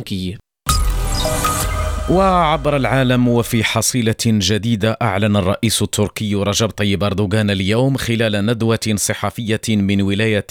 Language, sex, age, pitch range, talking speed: French, male, 40-59, 105-125 Hz, 95 wpm